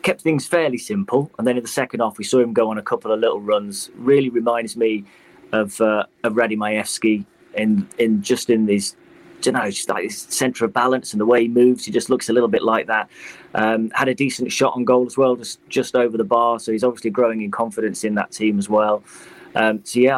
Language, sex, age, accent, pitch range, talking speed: English, male, 30-49, British, 105-125 Hz, 240 wpm